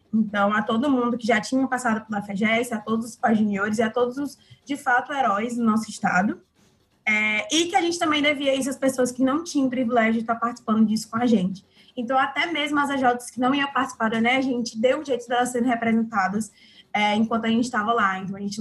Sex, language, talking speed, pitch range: female, Portuguese, 235 wpm, 220-265 Hz